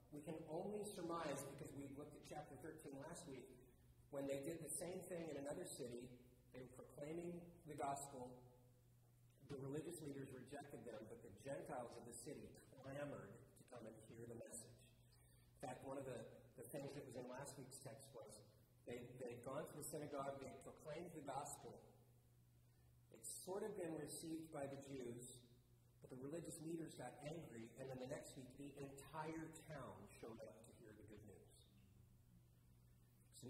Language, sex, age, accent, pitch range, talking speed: English, male, 40-59, American, 115-145 Hz, 175 wpm